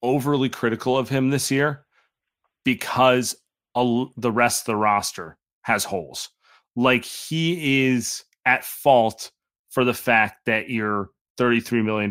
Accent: American